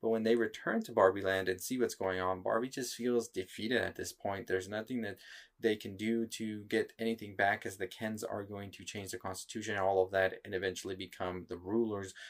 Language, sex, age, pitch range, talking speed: English, male, 20-39, 95-115 Hz, 230 wpm